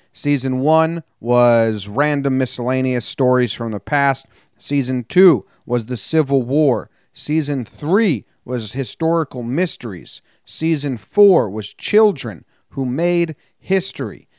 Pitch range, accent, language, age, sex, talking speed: 115-145 Hz, American, English, 30-49, male, 115 wpm